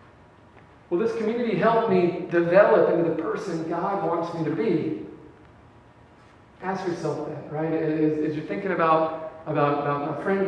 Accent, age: American, 40-59